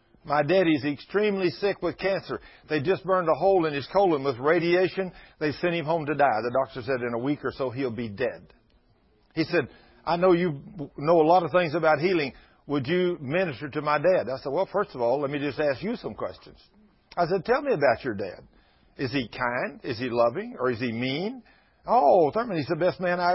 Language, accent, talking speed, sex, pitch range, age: English, American, 225 wpm, male, 140-190 Hz, 50-69